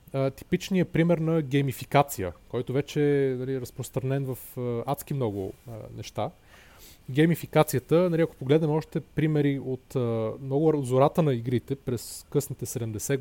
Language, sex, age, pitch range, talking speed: Bulgarian, male, 30-49, 120-150 Hz, 140 wpm